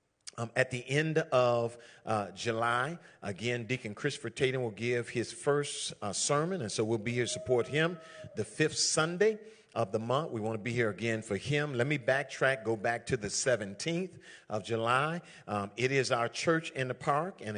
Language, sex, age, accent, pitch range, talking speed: English, male, 50-69, American, 115-155 Hz, 200 wpm